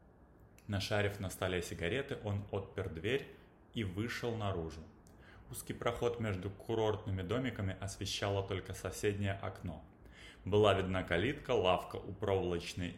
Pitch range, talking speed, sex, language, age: 85-105 Hz, 115 wpm, male, Russian, 20-39